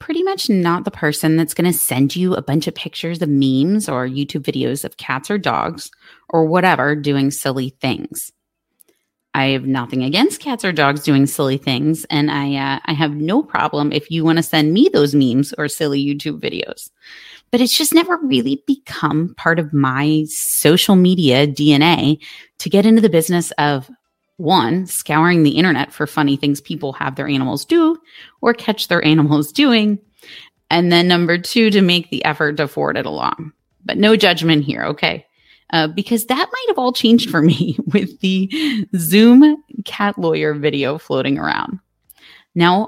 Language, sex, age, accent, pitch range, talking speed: English, female, 30-49, American, 145-210 Hz, 180 wpm